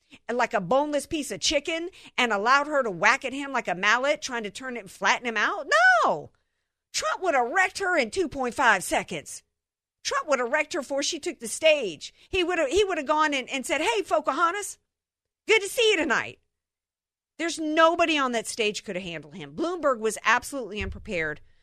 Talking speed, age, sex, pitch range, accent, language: 205 wpm, 50-69, female, 185-285 Hz, American, English